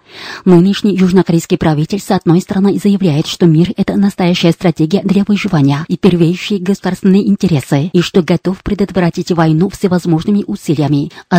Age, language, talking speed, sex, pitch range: 30-49, Russian, 135 wpm, female, 170-195 Hz